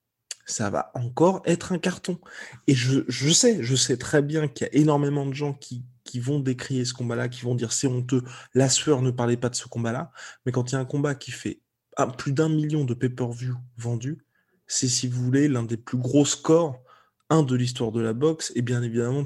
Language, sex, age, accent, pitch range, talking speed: French, male, 20-39, French, 125-145 Hz, 235 wpm